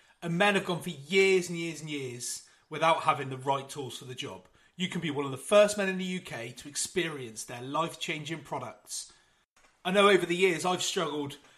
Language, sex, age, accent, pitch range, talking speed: English, male, 30-49, British, 145-185 Hz, 210 wpm